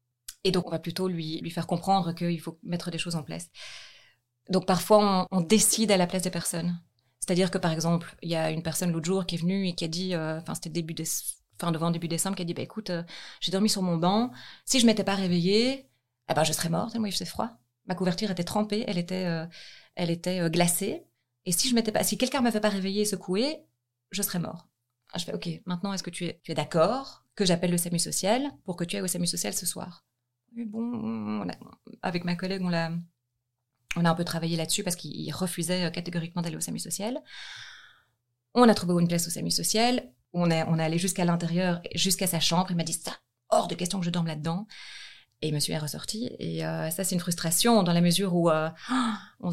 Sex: female